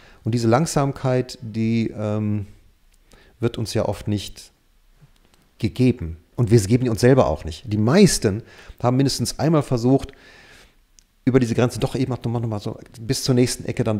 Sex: male